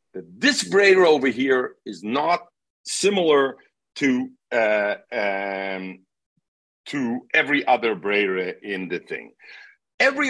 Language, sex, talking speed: English, male, 105 wpm